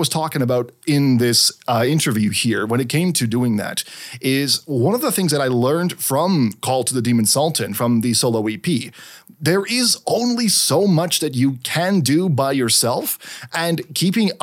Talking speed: 185 wpm